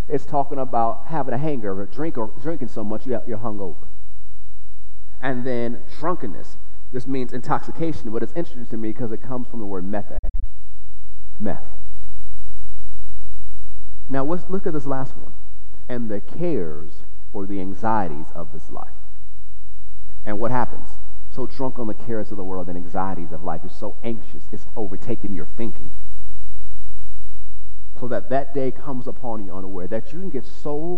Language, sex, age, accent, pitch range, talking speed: English, male, 40-59, American, 90-120 Hz, 165 wpm